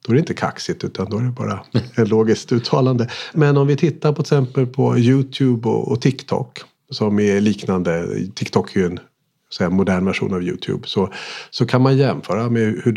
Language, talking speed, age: Swedish, 190 wpm, 50-69